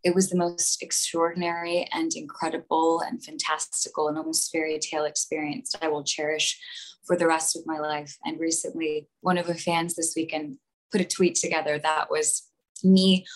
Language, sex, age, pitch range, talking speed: English, female, 20-39, 155-185 Hz, 175 wpm